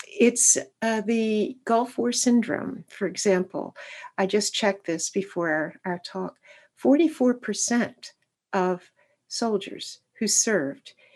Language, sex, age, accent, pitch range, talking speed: English, female, 60-79, American, 190-235 Hz, 115 wpm